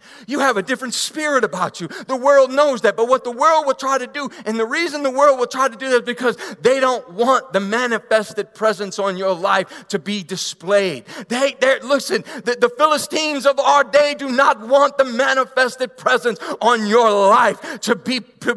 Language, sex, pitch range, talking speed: English, male, 160-270 Hz, 205 wpm